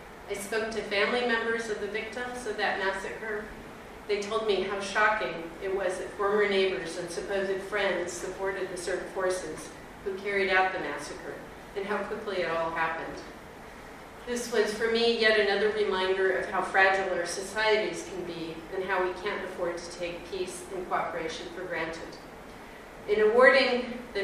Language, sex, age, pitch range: English, female, 40-59, 180-210 Hz